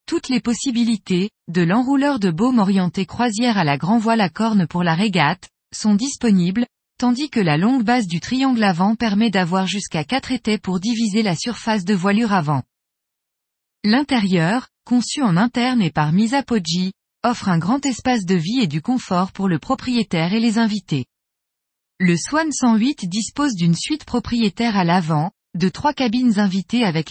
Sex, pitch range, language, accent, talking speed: female, 180-245 Hz, French, French, 170 wpm